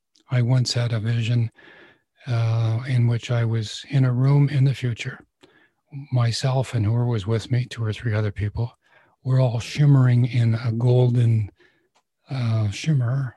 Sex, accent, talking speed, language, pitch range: male, American, 155 wpm, English, 110-130 Hz